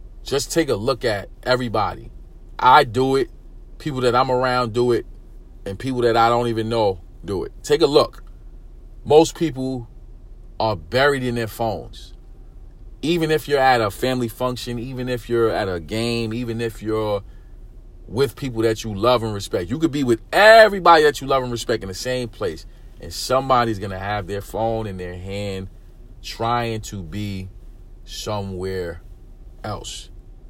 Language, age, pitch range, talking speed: English, 40-59, 105-125 Hz, 170 wpm